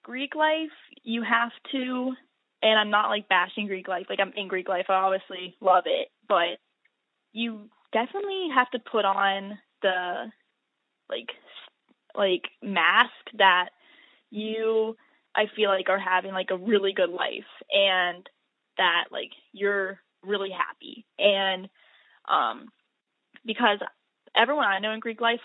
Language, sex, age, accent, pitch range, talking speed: English, female, 10-29, American, 195-235 Hz, 140 wpm